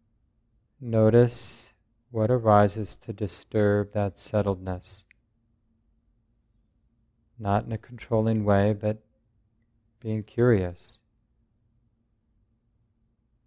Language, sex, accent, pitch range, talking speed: English, male, American, 105-115 Hz, 65 wpm